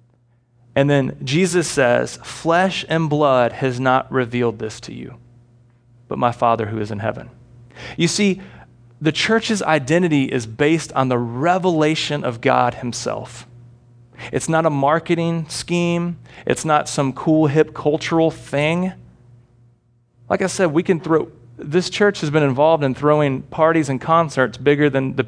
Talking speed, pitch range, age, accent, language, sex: 150 wpm, 120-165 Hz, 30-49, American, English, male